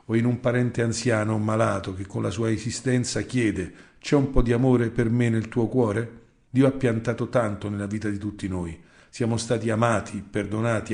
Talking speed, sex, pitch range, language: 195 wpm, male, 105-125 Hz, Italian